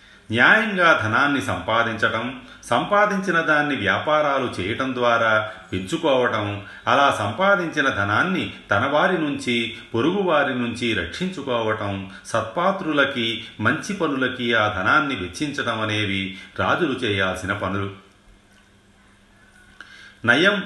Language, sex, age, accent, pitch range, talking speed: Telugu, male, 40-59, native, 100-125 Hz, 85 wpm